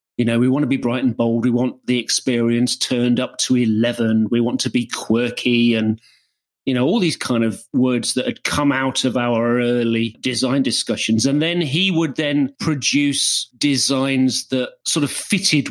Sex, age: male, 40-59